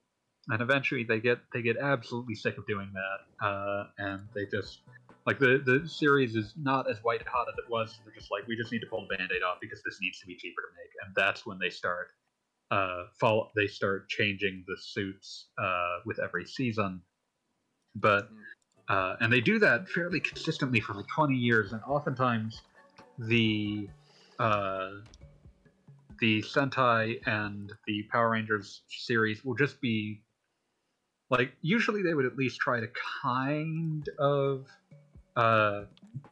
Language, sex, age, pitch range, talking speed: English, male, 30-49, 105-140 Hz, 165 wpm